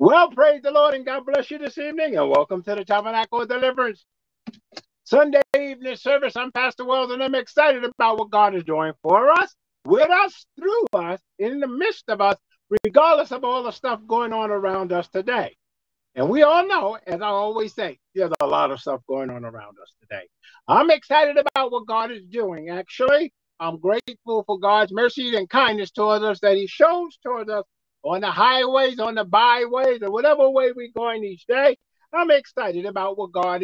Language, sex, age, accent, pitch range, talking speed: English, male, 50-69, American, 180-270 Hz, 195 wpm